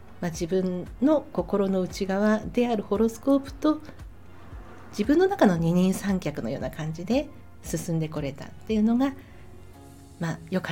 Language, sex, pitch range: Japanese, female, 165-245 Hz